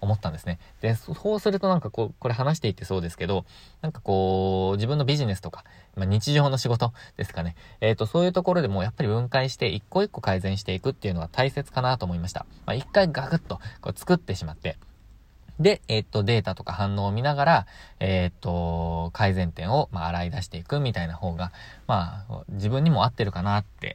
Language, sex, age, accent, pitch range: Japanese, male, 20-39, native, 90-125 Hz